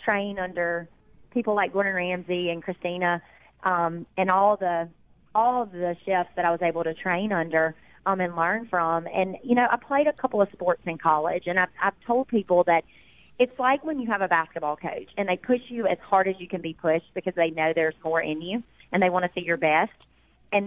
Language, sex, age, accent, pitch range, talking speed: English, female, 30-49, American, 170-195 Hz, 225 wpm